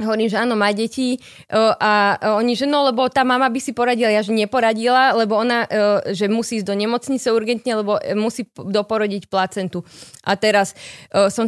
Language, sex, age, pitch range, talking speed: Slovak, female, 20-39, 195-250 Hz, 170 wpm